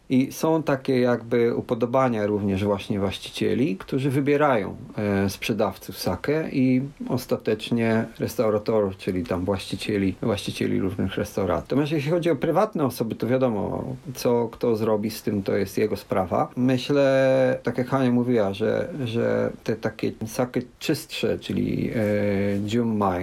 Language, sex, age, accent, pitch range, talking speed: Polish, male, 40-59, native, 105-125 Hz, 135 wpm